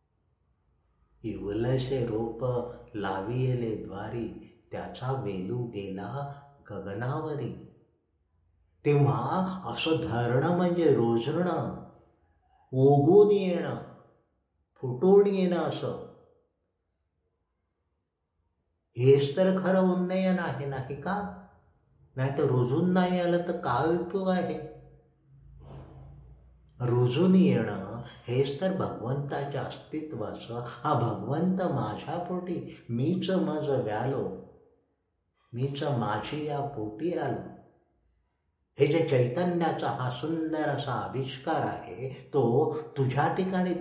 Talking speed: 65 wpm